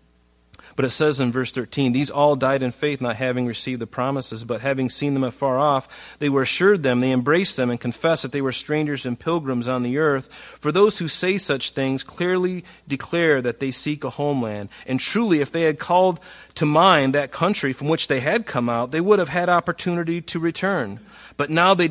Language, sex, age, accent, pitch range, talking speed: English, male, 30-49, American, 110-145 Hz, 215 wpm